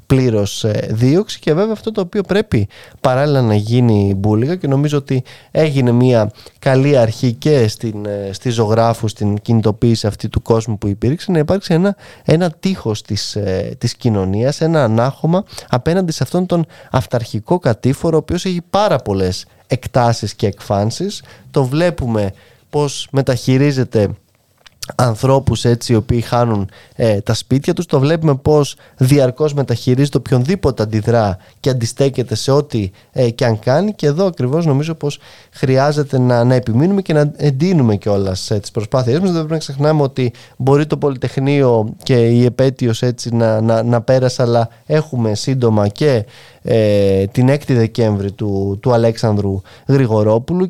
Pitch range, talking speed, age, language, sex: 115-145 Hz, 150 wpm, 20-39, Greek, male